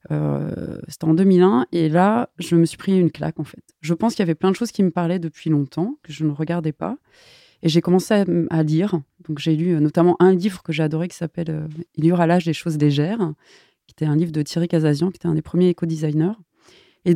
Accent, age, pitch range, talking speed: French, 30-49, 160-200 Hz, 250 wpm